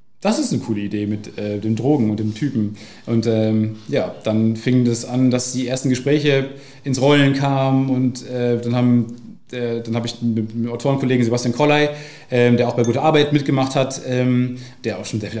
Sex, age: male, 30-49